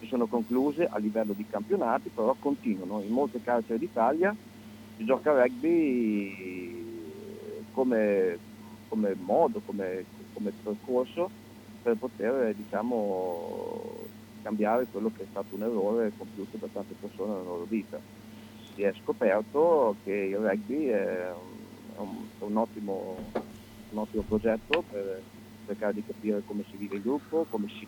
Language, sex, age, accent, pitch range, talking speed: Italian, male, 40-59, native, 100-115 Hz, 140 wpm